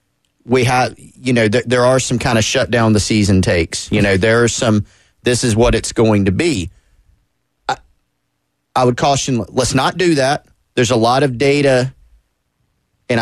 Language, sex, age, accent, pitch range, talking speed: English, male, 30-49, American, 100-125 Hz, 185 wpm